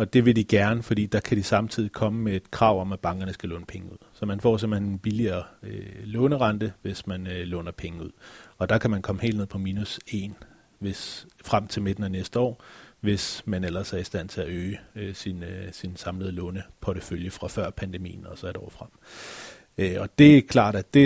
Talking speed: 230 wpm